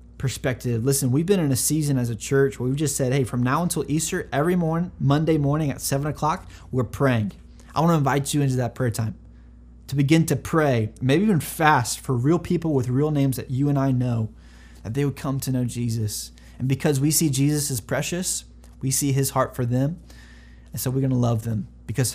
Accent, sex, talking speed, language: American, male, 225 wpm, English